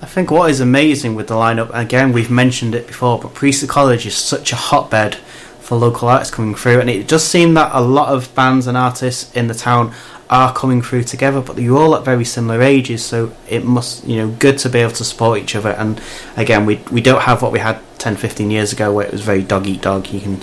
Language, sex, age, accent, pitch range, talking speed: English, male, 30-49, British, 110-130 Hz, 250 wpm